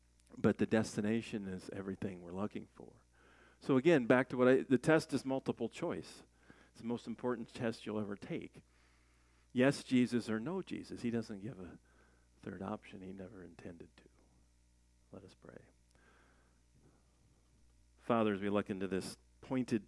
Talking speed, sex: 155 wpm, male